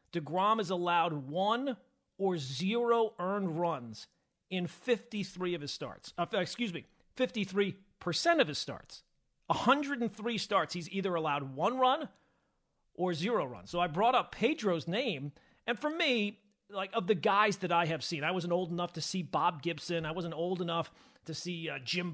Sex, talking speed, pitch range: male, 170 wpm, 165-210 Hz